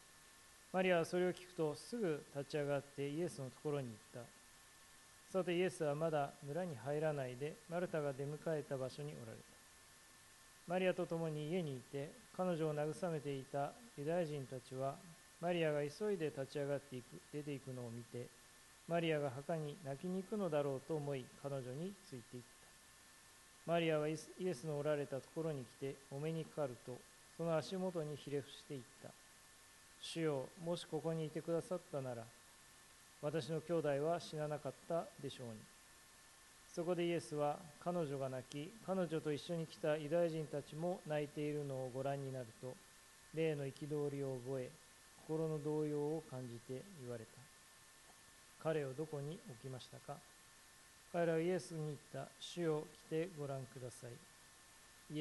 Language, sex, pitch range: Japanese, male, 135-165 Hz